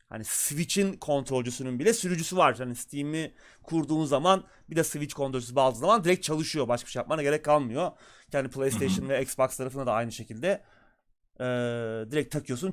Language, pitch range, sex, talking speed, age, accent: Turkish, 130-165 Hz, male, 165 wpm, 30-49, native